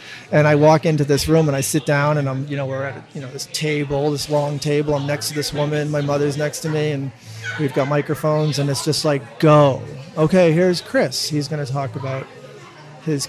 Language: English